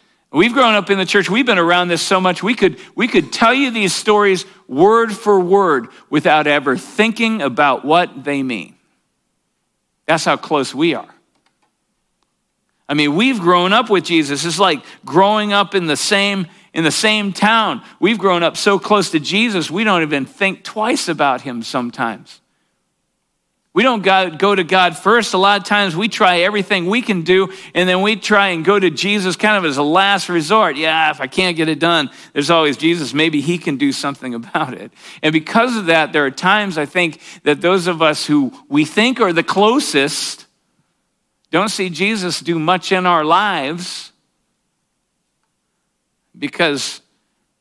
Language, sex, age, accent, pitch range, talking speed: English, male, 50-69, American, 160-205 Hz, 180 wpm